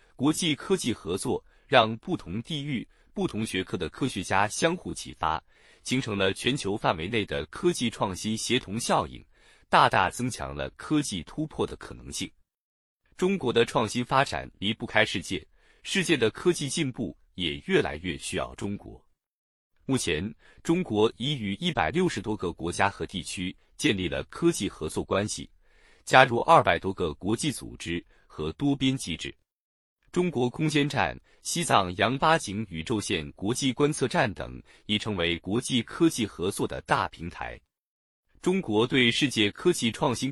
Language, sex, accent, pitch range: Chinese, male, native, 100-150 Hz